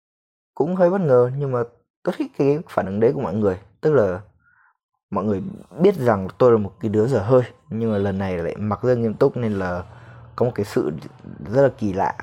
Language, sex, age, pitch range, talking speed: Vietnamese, male, 20-39, 105-130 Hz, 230 wpm